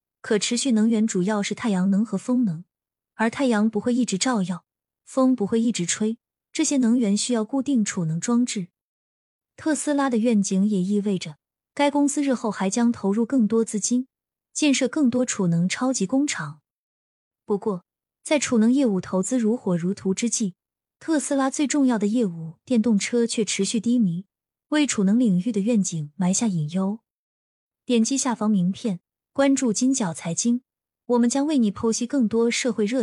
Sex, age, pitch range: female, 20-39, 195-250 Hz